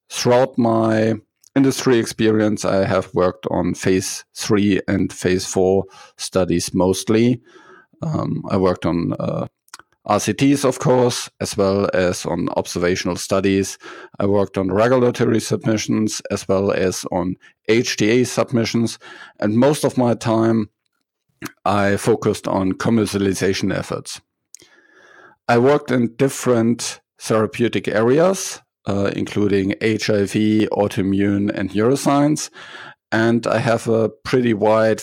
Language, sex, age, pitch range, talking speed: English, male, 50-69, 95-120 Hz, 115 wpm